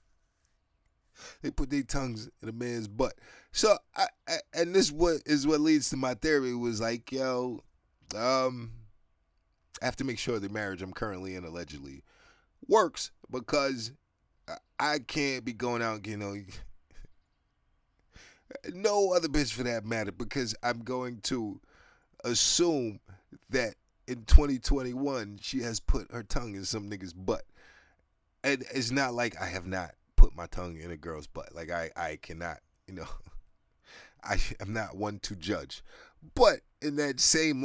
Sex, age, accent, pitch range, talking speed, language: male, 20-39, American, 95-135 Hz, 155 wpm, English